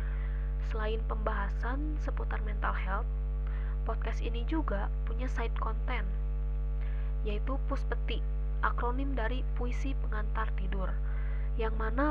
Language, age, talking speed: Indonesian, 20-39, 100 wpm